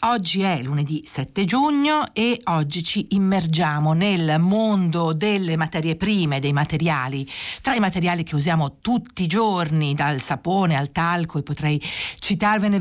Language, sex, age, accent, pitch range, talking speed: Italian, female, 50-69, native, 155-200 Hz, 145 wpm